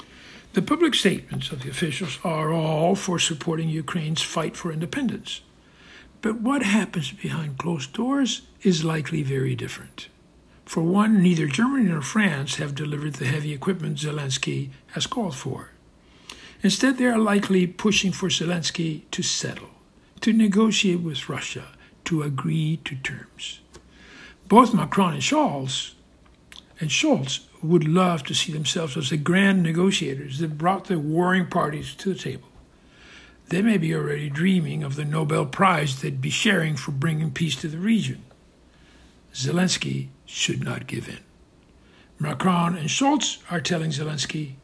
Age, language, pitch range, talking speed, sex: 60-79, English, 145-190 Hz, 145 wpm, male